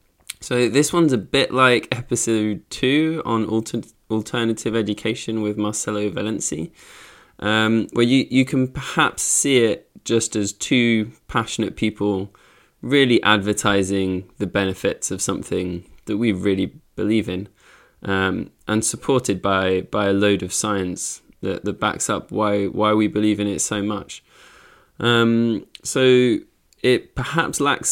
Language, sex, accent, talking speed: English, male, British, 140 wpm